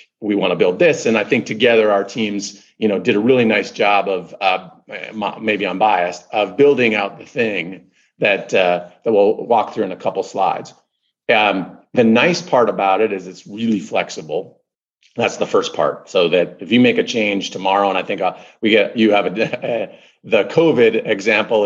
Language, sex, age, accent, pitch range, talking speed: English, male, 40-59, American, 100-145 Hz, 200 wpm